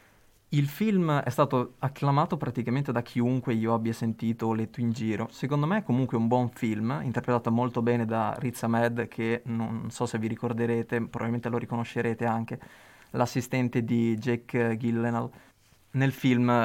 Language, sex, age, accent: Italian, male, 20-39, native